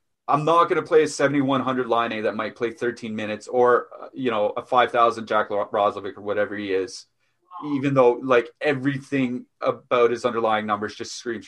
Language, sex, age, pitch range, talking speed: English, male, 30-49, 115-140 Hz, 185 wpm